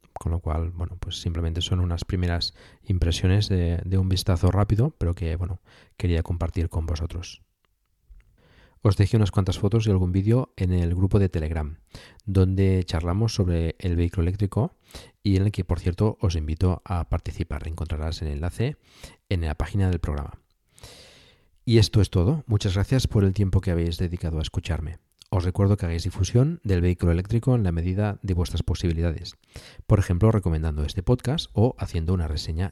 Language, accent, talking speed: Spanish, Spanish, 175 wpm